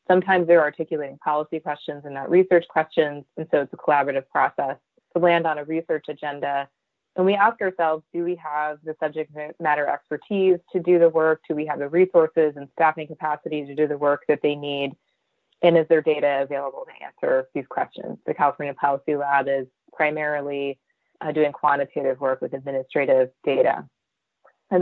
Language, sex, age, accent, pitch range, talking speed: English, female, 20-39, American, 145-165 Hz, 180 wpm